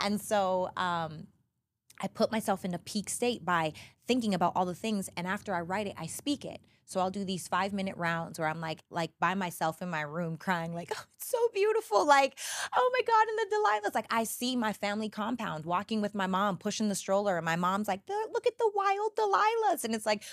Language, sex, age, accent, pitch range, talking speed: English, female, 20-39, American, 180-245 Hz, 225 wpm